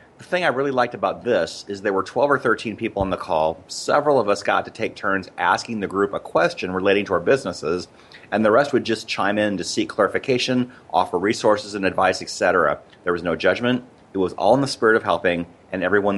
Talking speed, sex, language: 230 wpm, male, English